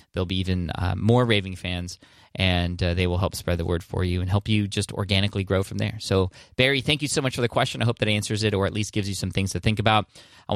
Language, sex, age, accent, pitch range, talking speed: English, male, 20-39, American, 95-120 Hz, 285 wpm